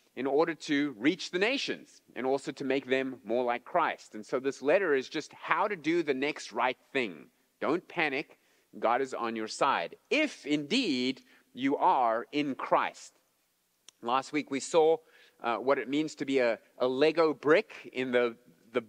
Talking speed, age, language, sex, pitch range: 180 wpm, 30-49, English, male, 115-175 Hz